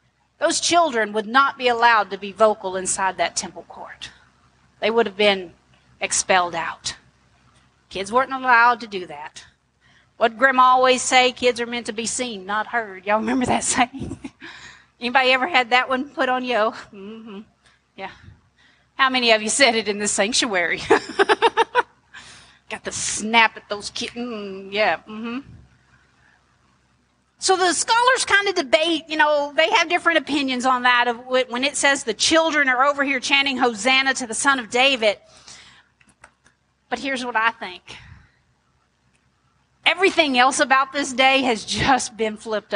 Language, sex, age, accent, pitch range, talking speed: English, female, 40-59, American, 215-280 Hz, 160 wpm